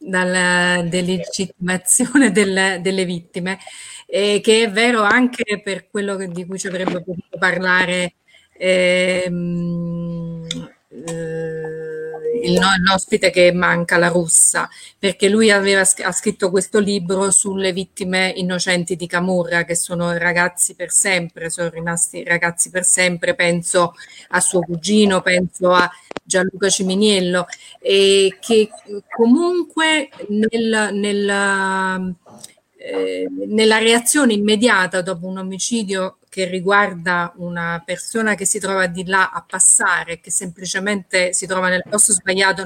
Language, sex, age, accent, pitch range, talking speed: Italian, female, 30-49, native, 180-205 Hz, 120 wpm